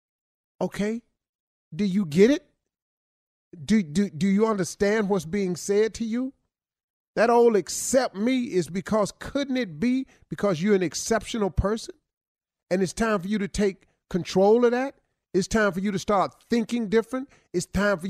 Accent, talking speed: American, 165 wpm